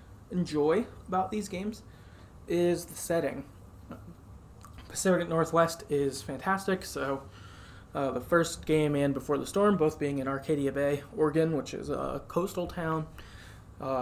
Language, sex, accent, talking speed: English, male, American, 135 wpm